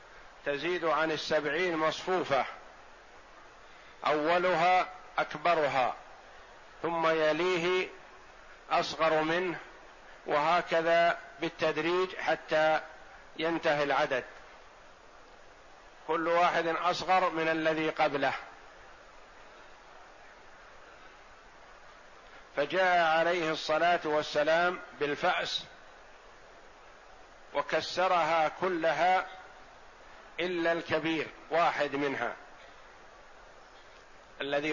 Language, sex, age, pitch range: Arabic, male, 50-69, 150-175 Hz